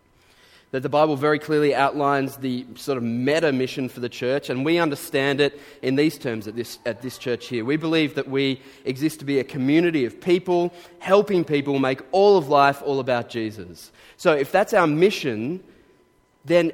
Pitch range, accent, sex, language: 125-150 Hz, Australian, male, English